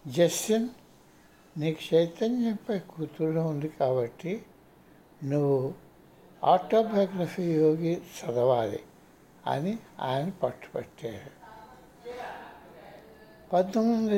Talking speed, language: 60 wpm, Telugu